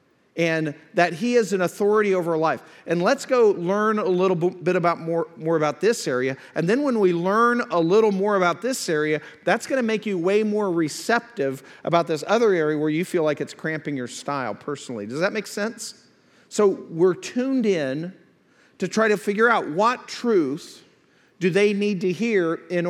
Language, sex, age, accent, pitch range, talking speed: English, male, 50-69, American, 135-190 Hz, 195 wpm